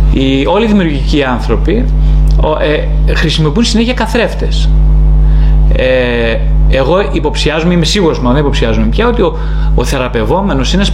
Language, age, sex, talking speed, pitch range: Greek, 30-49, male, 130 wpm, 145-180 Hz